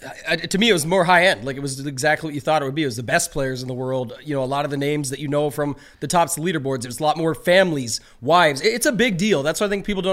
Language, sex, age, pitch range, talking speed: English, male, 30-49, 150-185 Hz, 350 wpm